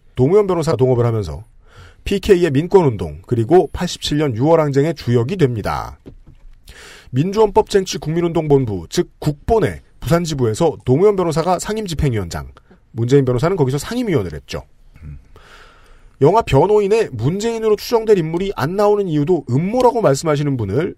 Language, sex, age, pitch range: Korean, male, 40-59, 120-190 Hz